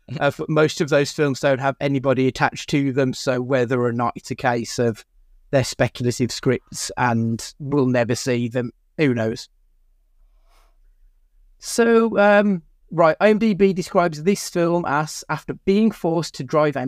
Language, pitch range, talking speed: English, 125-165 Hz, 155 wpm